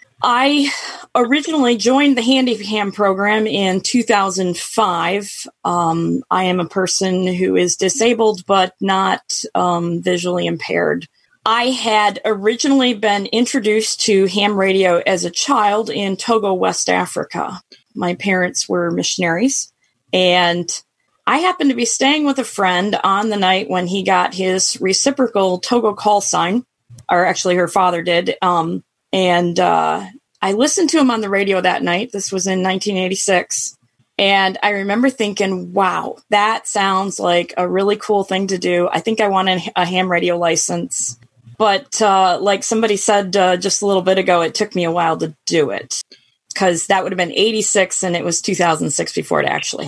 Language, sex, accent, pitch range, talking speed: English, female, American, 180-215 Hz, 165 wpm